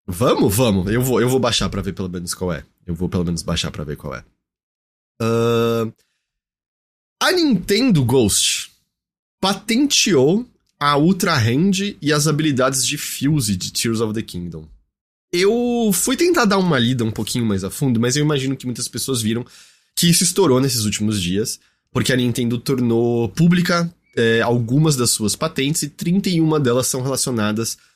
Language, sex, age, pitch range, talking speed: Portuguese, male, 20-39, 105-150 Hz, 165 wpm